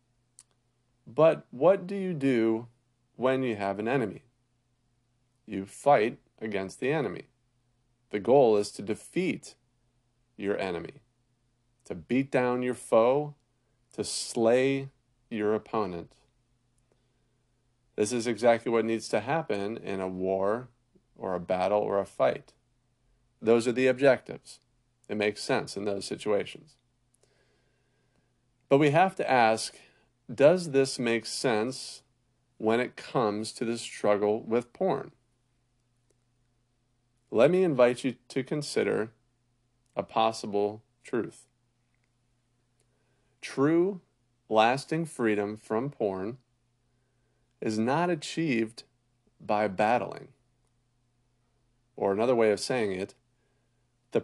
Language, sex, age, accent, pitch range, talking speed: English, male, 40-59, American, 115-125 Hz, 110 wpm